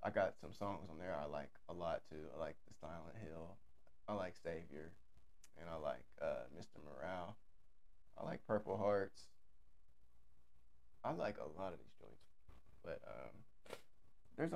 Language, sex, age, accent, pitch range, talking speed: English, male, 20-39, American, 80-100 Hz, 160 wpm